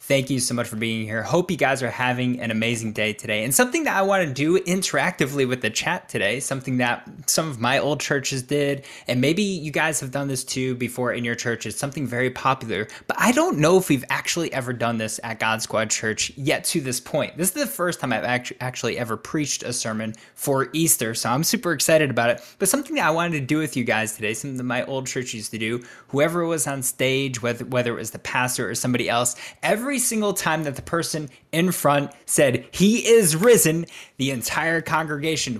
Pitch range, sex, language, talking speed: 125-170 Hz, male, English, 230 wpm